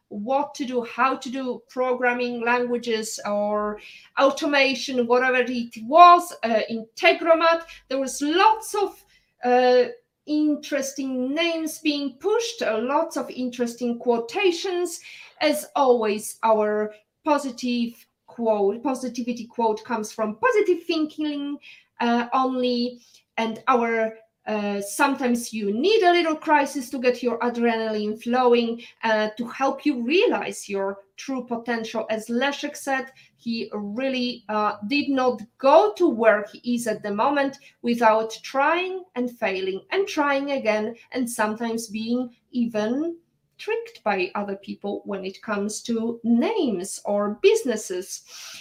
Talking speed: 125 wpm